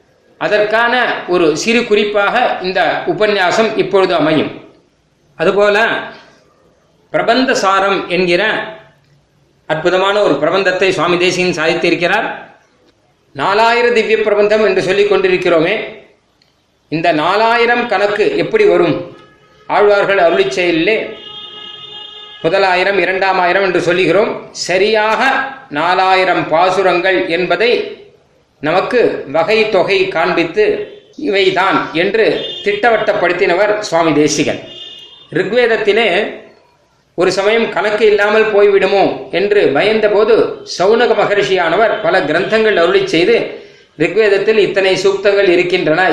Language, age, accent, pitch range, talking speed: Tamil, 30-49, native, 185-245 Hz, 85 wpm